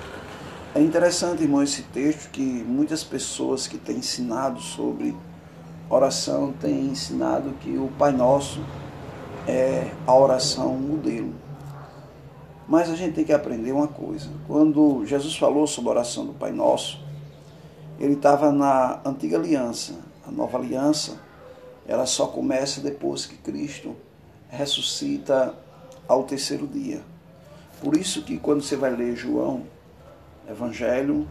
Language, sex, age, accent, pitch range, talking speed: Portuguese, male, 20-39, Brazilian, 130-170 Hz, 125 wpm